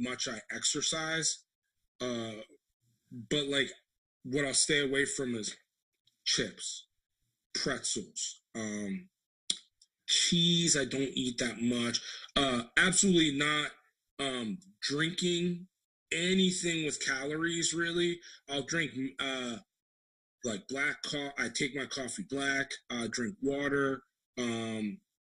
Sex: male